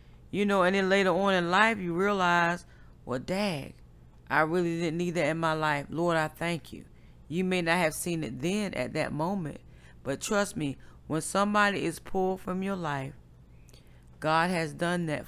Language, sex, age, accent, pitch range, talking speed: English, female, 40-59, American, 145-195 Hz, 190 wpm